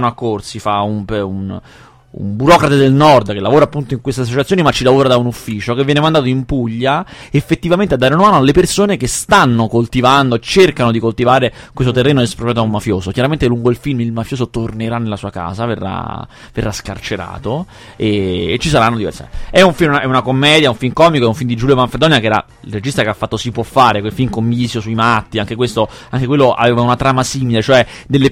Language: Italian